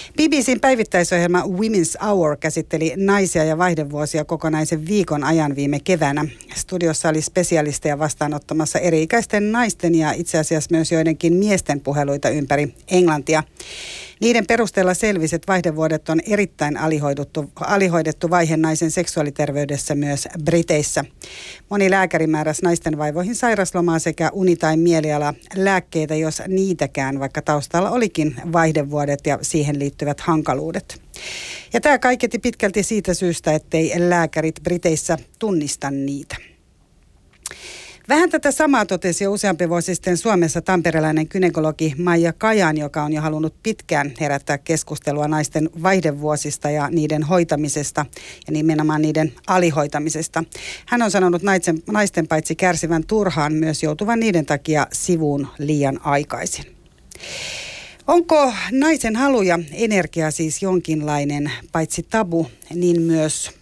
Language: Finnish